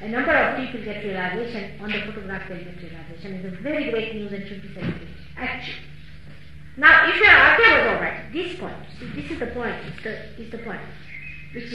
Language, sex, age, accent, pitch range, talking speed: English, female, 50-69, Indian, 185-275 Hz, 210 wpm